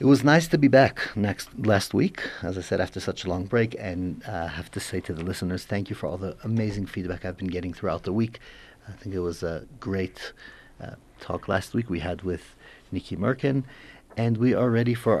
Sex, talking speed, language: male, 235 wpm, English